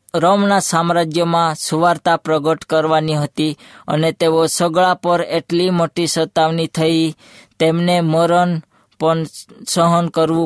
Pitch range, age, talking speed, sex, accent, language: 160-175 Hz, 20-39, 90 wpm, female, native, Hindi